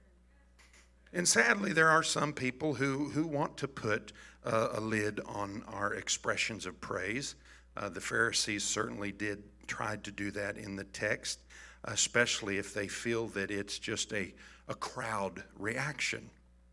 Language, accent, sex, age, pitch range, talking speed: English, American, male, 50-69, 100-140 Hz, 150 wpm